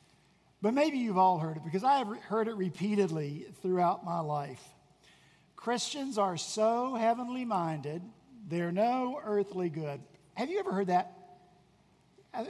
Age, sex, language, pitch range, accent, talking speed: 50-69, male, English, 175-235 Hz, American, 145 wpm